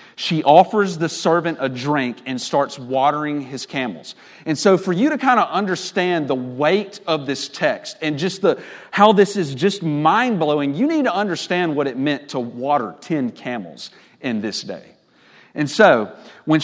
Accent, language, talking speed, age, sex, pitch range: American, English, 175 wpm, 40-59, male, 140-195 Hz